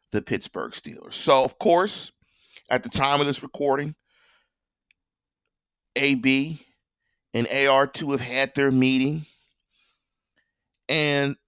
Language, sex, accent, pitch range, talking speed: English, male, American, 130-160 Hz, 105 wpm